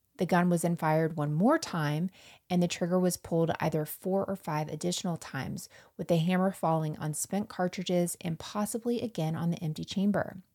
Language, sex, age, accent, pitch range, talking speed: English, female, 20-39, American, 155-195 Hz, 190 wpm